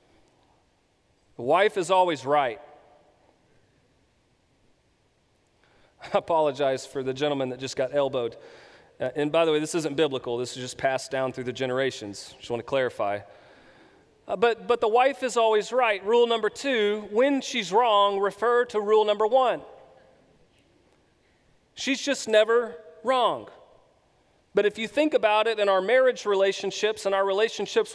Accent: American